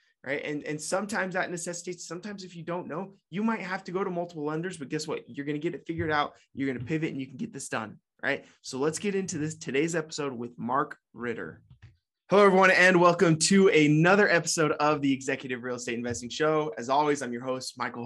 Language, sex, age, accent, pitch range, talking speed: English, male, 20-39, American, 140-180 Hz, 235 wpm